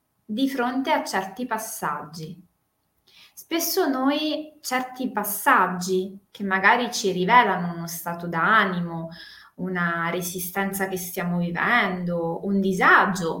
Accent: native